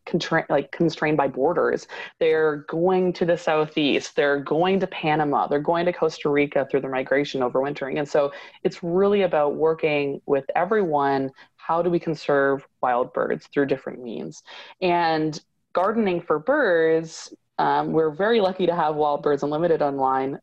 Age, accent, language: 20-39, American, English